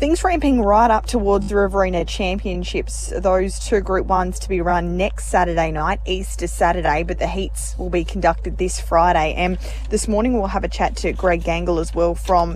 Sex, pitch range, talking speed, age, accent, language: female, 170-195 Hz, 195 wpm, 20-39, Australian, English